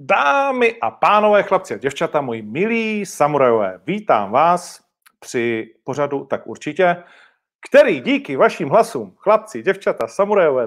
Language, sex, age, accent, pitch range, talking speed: Czech, male, 40-59, native, 120-175 Hz, 125 wpm